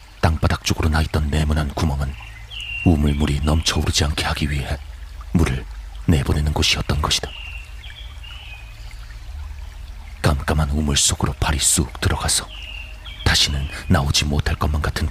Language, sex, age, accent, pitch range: Korean, male, 40-59, native, 75-85 Hz